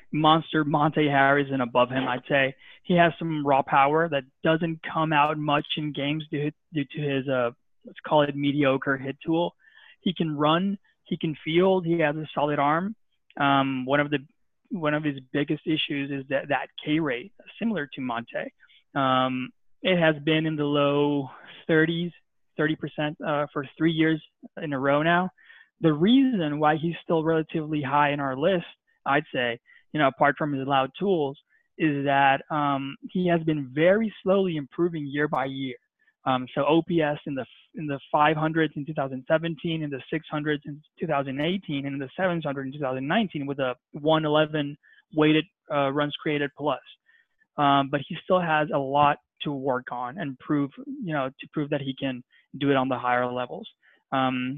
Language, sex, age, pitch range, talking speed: English, male, 20-39, 140-165 Hz, 180 wpm